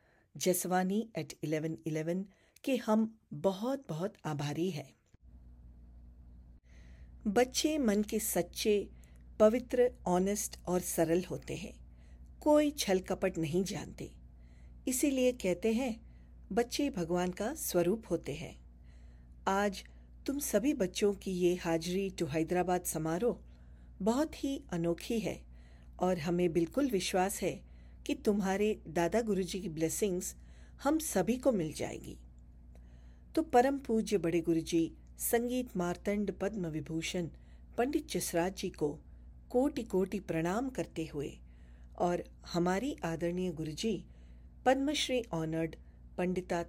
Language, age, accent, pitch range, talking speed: English, 50-69, Indian, 160-220 Hz, 110 wpm